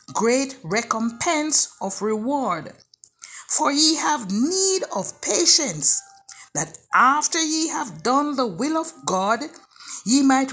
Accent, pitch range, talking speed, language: Nigerian, 215-325 Hz, 120 wpm, English